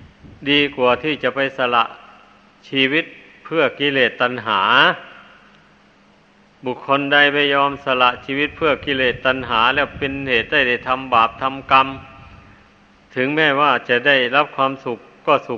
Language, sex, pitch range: Thai, male, 120-140 Hz